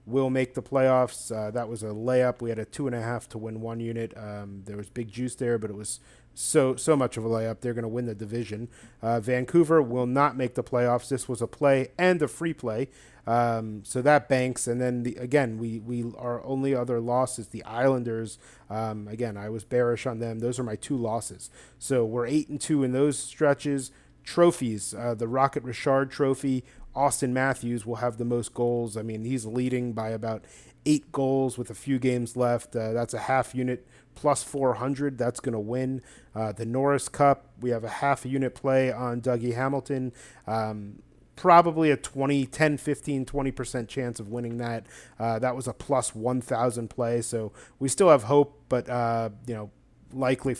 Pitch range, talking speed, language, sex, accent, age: 115-135 Hz, 205 wpm, English, male, American, 40-59